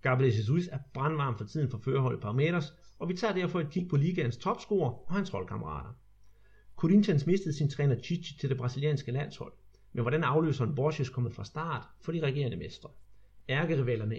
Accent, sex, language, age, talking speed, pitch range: native, male, Danish, 30-49, 185 wpm, 120-155 Hz